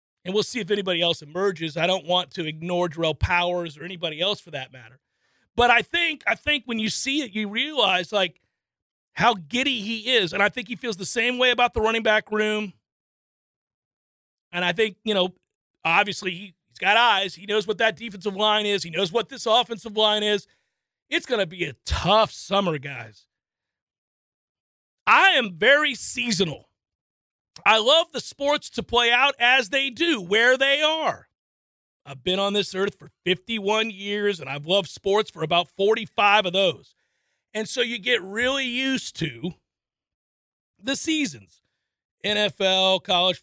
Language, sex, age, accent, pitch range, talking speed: English, male, 40-59, American, 170-230 Hz, 175 wpm